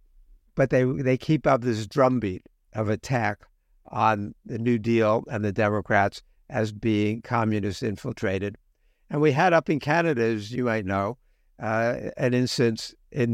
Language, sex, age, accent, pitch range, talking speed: English, male, 60-79, American, 110-135 Hz, 155 wpm